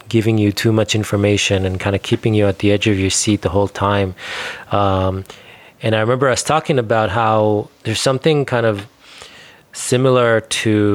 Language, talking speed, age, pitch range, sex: English, 185 wpm, 20-39, 95-110 Hz, male